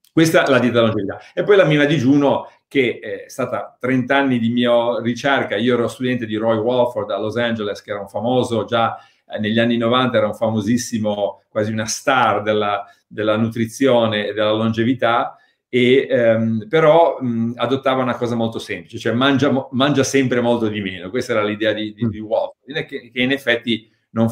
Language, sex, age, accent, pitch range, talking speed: Italian, male, 50-69, native, 110-135 Hz, 185 wpm